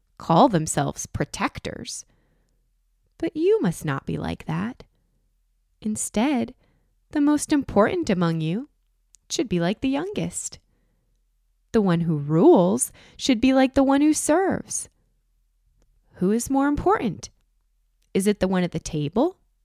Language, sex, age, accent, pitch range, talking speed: English, female, 20-39, American, 170-245 Hz, 130 wpm